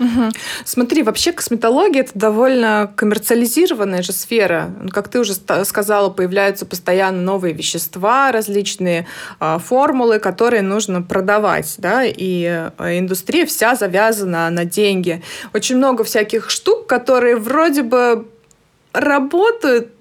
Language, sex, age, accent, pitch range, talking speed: Russian, female, 20-39, native, 190-245 Hz, 110 wpm